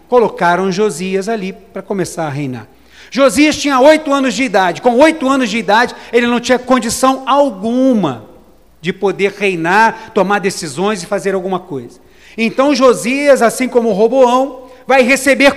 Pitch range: 230-280 Hz